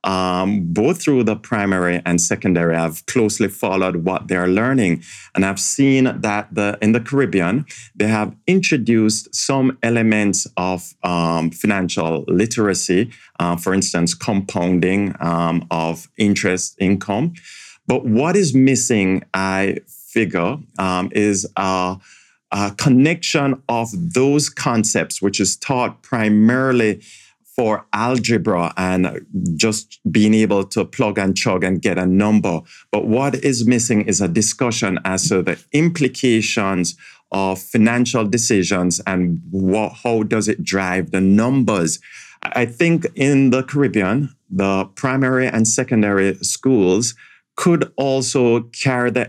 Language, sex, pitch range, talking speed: English, male, 95-125 Hz, 125 wpm